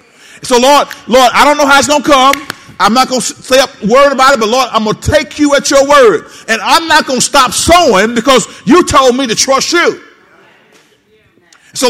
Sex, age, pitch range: male, 50-69, 215-275 Hz